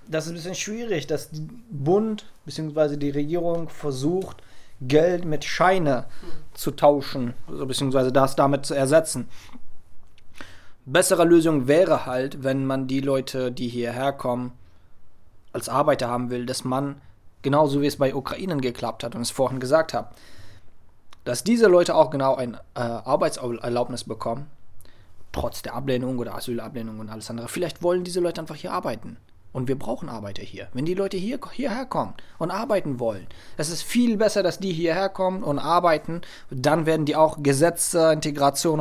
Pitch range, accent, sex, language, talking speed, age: 120-160 Hz, German, male, German, 160 wpm, 20-39